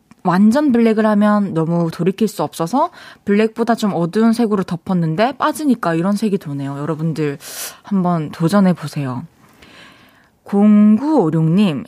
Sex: female